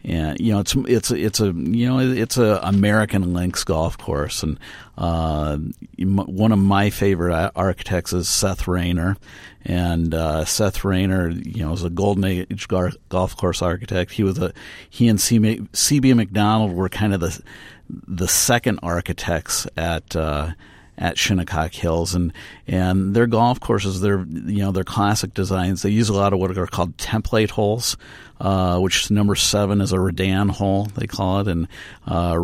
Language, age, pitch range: English, 50-69, 85-105 Hz